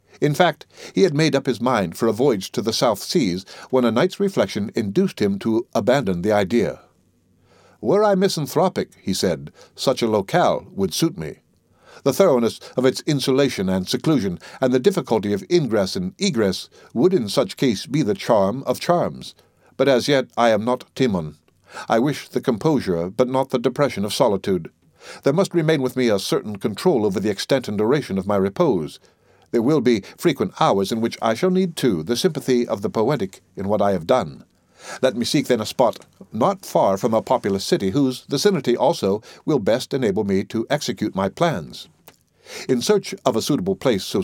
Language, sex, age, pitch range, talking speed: English, male, 60-79, 115-170 Hz, 195 wpm